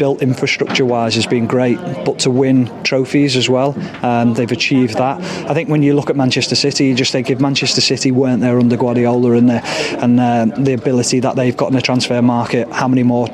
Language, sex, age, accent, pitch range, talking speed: English, male, 30-49, British, 125-150 Hz, 215 wpm